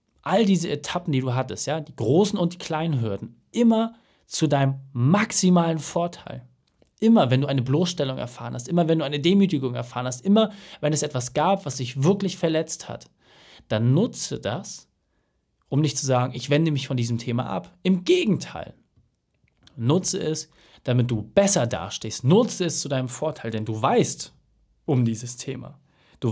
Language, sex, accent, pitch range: German, male, German, 125-175 Hz